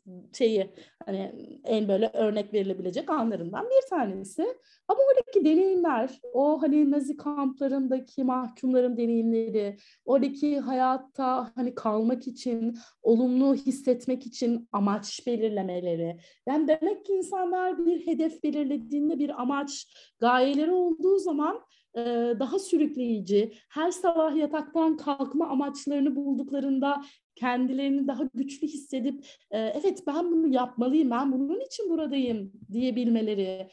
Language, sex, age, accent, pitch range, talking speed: Turkish, female, 30-49, native, 220-295 Hz, 110 wpm